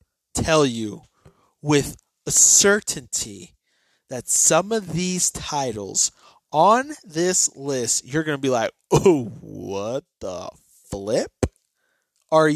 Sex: male